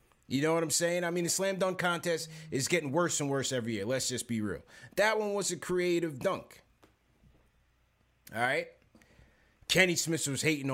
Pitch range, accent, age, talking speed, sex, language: 130-185 Hz, American, 30-49, 190 wpm, male, English